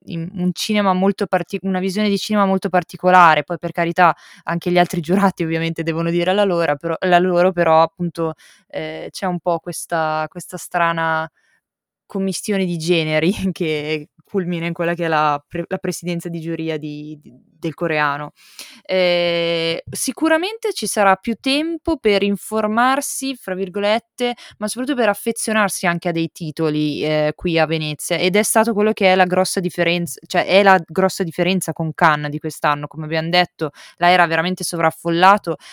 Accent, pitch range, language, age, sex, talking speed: native, 170-200 Hz, Italian, 20-39, female, 165 wpm